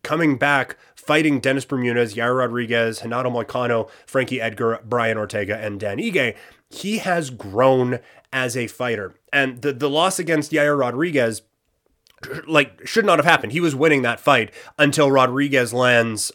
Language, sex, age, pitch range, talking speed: English, male, 30-49, 120-145 Hz, 155 wpm